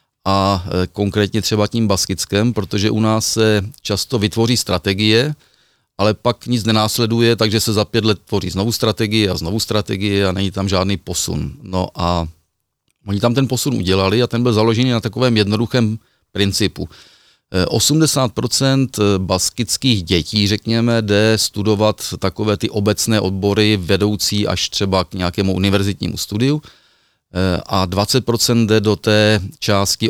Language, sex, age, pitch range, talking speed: Czech, male, 40-59, 95-115 Hz, 140 wpm